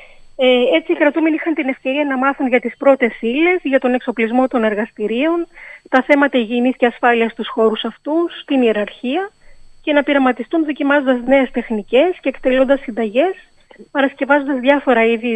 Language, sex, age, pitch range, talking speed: Greek, female, 30-49, 230-280 Hz, 150 wpm